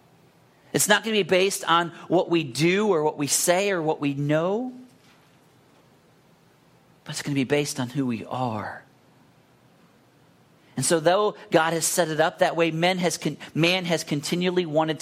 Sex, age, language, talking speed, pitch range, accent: male, 40-59, English, 170 wpm, 145-185 Hz, American